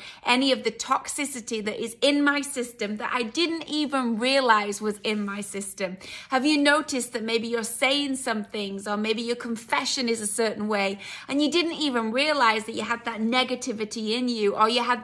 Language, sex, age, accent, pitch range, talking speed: English, female, 30-49, British, 210-255 Hz, 200 wpm